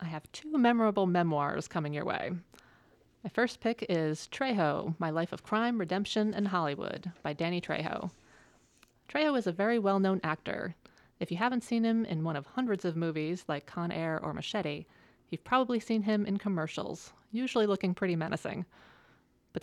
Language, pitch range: English, 165-215 Hz